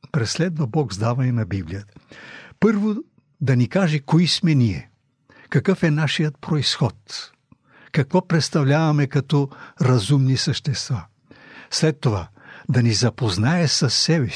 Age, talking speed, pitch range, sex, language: 60-79, 115 wpm, 120-155 Hz, male, Bulgarian